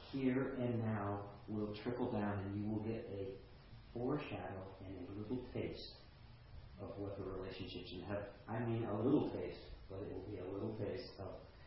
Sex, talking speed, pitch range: male, 180 wpm, 95-115 Hz